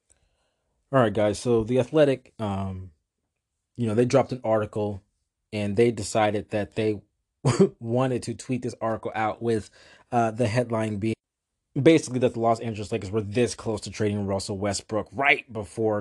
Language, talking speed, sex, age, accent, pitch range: English, 165 wpm, male, 20-39, American, 100-115 Hz